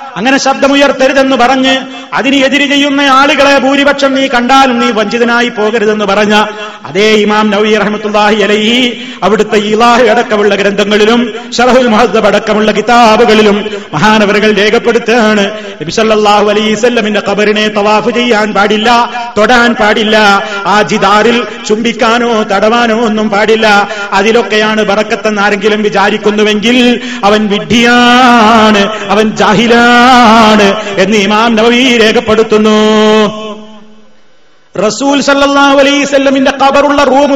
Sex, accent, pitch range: male, native, 210-245 Hz